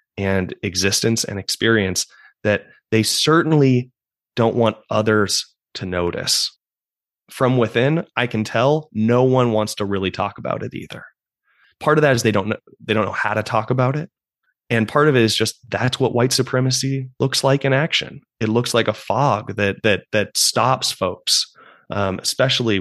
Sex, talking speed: male, 175 wpm